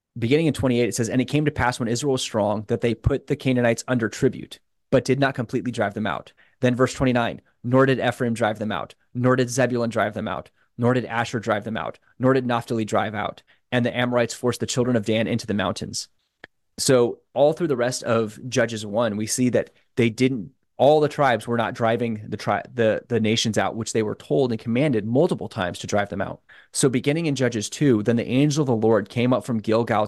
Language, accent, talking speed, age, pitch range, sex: English, American, 235 wpm, 20-39, 110-130 Hz, male